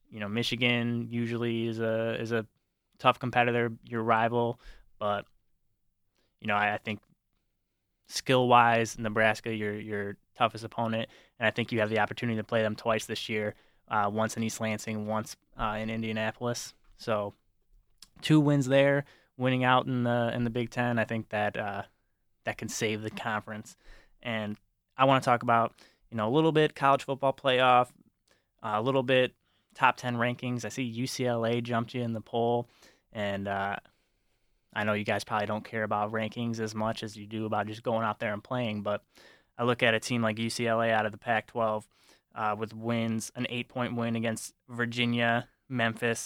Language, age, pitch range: English, 20-39, 110-120 Hz